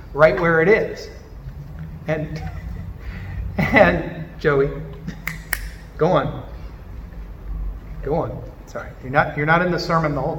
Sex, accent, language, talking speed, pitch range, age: male, American, English, 120 wpm, 150-190 Hz, 40-59